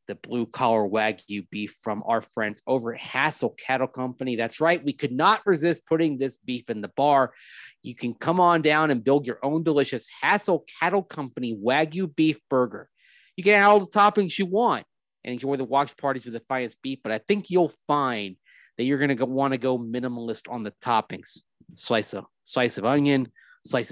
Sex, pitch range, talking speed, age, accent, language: male, 120-155 Hz, 195 wpm, 30-49, American, English